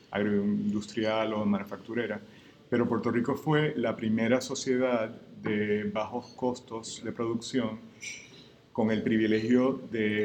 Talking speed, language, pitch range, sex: 110 wpm, Spanish, 110-130 Hz, male